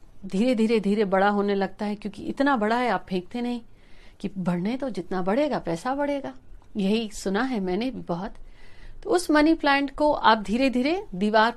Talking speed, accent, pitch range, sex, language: 185 wpm, native, 190-250 Hz, female, Hindi